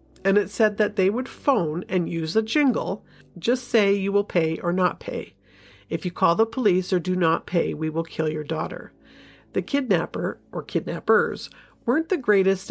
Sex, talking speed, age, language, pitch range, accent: female, 190 wpm, 50-69, English, 165-225 Hz, American